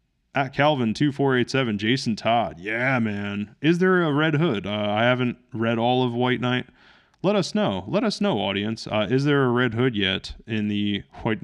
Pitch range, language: 110-135 Hz, English